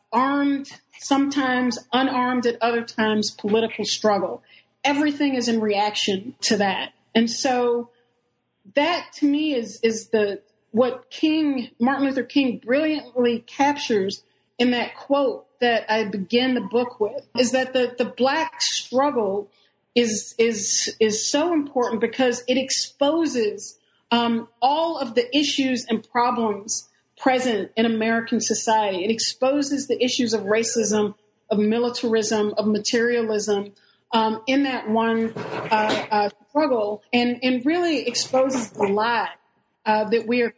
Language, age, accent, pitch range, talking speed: English, 40-59, American, 215-265 Hz, 135 wpm